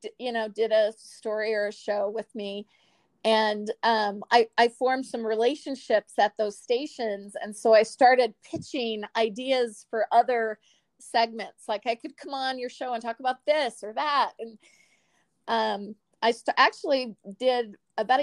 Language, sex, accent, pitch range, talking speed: English, female, American, 220-255 Hz, 160 wpm